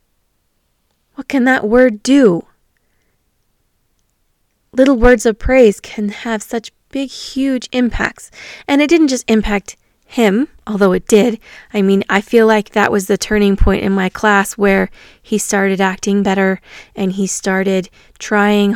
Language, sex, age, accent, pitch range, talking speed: English, female, 20-39, American, 190-245 Hz, 145 wpm